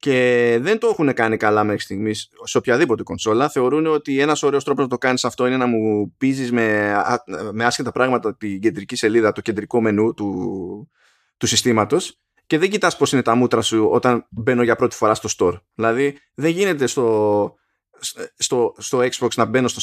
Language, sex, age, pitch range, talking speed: Greek, male, 20-39, 115-145 Hz, 190 wpm